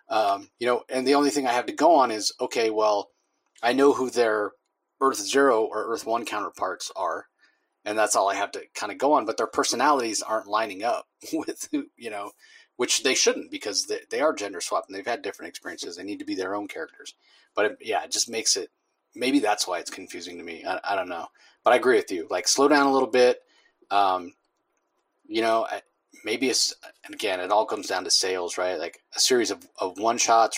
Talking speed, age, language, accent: 225 wpm, 30-49, English, American